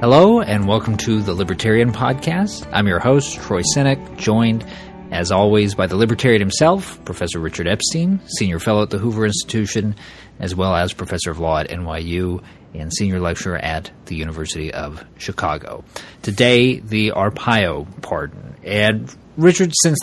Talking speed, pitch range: 155 wpm, 100-130 Hz